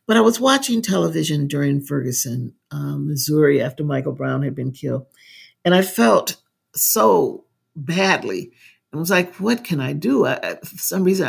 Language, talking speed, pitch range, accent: English, 160 wpm, 140-180 Hz, American